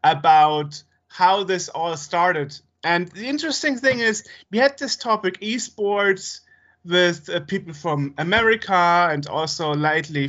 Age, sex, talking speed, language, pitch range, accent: 30-49, male, 135 wpm, English, 145-185 Hz, German